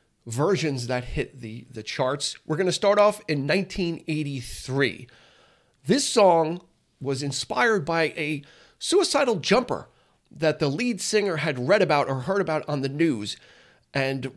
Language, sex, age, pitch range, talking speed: English, male, 40-59, 145-205 Hz, 145 wpm